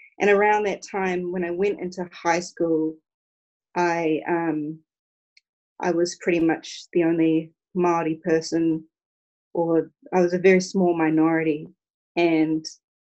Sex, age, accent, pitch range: female, 30-49, Australian, 160-180 Hz